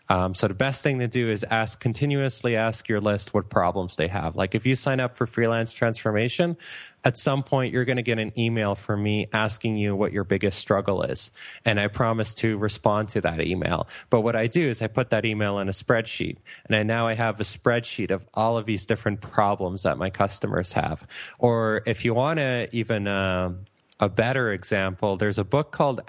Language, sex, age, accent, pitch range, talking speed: English, male, 20-39, American, 95-115 Hz, 215 wpm